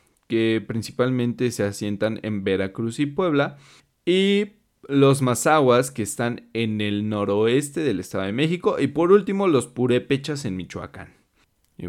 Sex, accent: male, Mexican